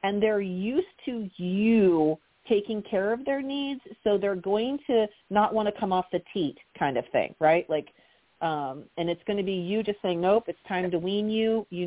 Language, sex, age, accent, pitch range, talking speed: English, female, 40-59, American, 165-220 Hz, 210 wpm